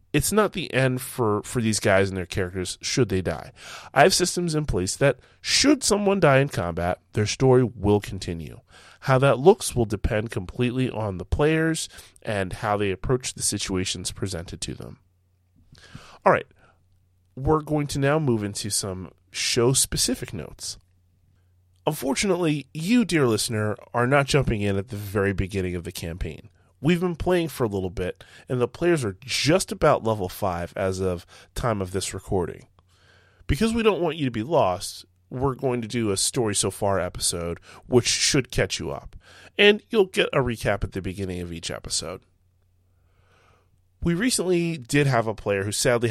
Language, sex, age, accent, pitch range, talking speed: English, male, 20-39, American, 95-135 Hz, 170 wpm